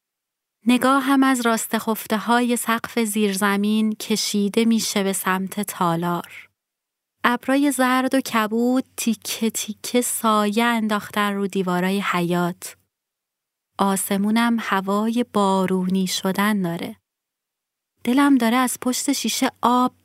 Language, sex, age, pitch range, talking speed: Persian, female, 30-49, 210-245 Hz, 100 wpm